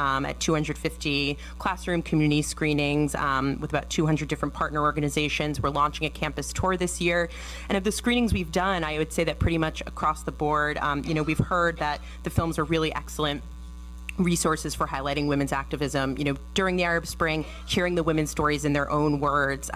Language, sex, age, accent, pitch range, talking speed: English, female, 30-49, American, 150-175 Hz, 195 wpm